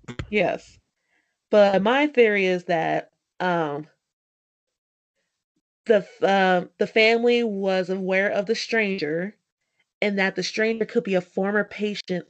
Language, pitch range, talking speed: English, 185-240 Hz, 130 wpm